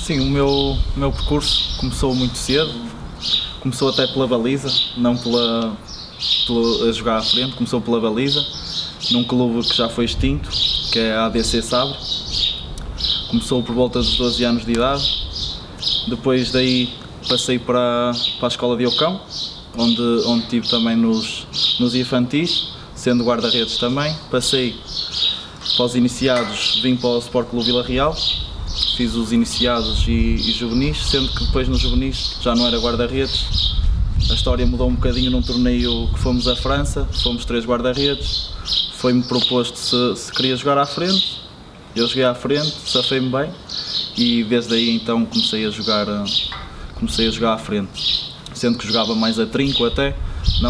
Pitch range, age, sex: 115-130 Hz, 20-39, male